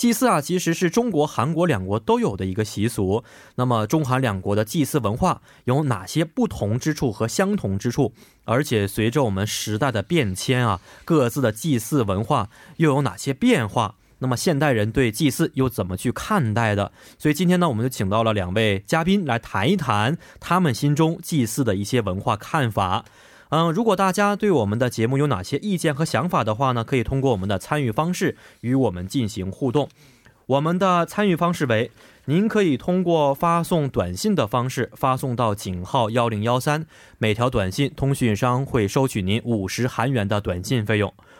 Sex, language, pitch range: male, Korean, 110-155 Hz